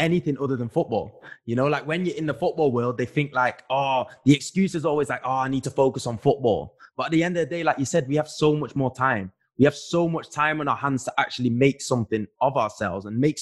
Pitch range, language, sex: 115-140 Hz, English, male